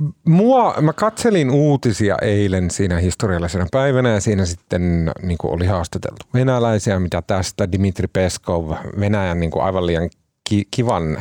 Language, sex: Finnish, male